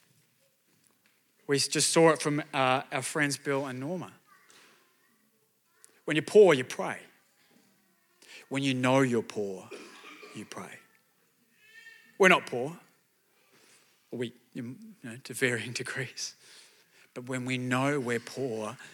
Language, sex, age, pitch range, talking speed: English, male, 30-49, 130-195 Hz, 110 wpm